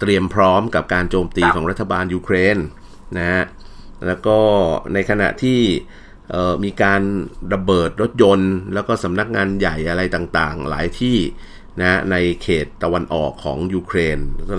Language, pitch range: Thai, 85-105 Hz